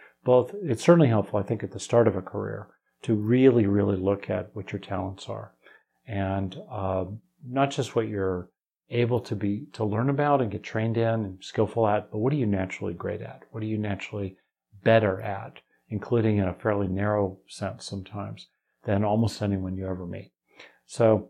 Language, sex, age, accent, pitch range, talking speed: English, male, 40-59, American, 100-130 Hz, 190 wpm